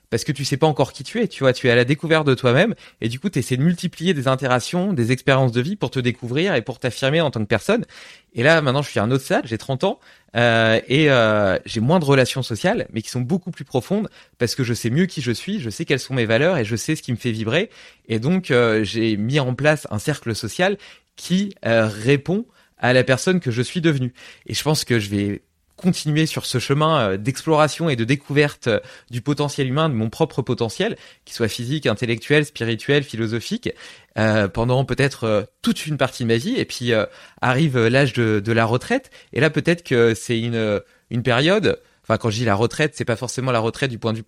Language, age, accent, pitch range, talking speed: French, 20-39, French, 115-155 Hz, 240 wpm